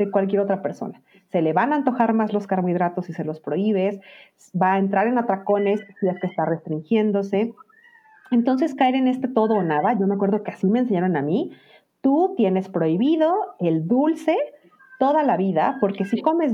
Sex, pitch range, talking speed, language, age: female, 185-255 Hz, 195 wpm, Spanish, 40-59